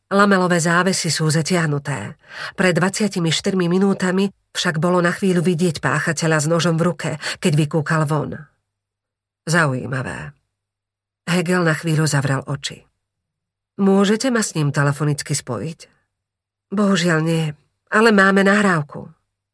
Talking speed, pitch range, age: 115 wpm, 145-175 Hz, 40-59